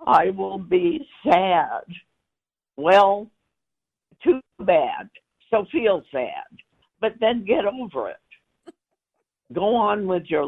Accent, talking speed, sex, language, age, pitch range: American, 110 wpm, female, English, 60-79, 155-215 Hz